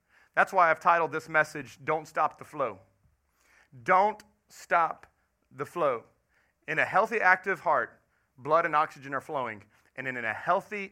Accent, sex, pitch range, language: American, male, 140-185 Hz, English